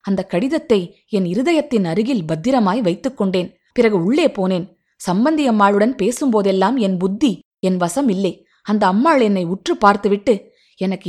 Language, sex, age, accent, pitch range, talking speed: Tamil, female, 20-39, native, 195-265 Hz, 125 wpm